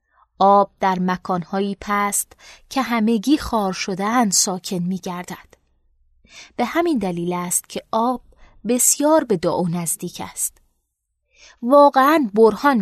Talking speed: 110 wpm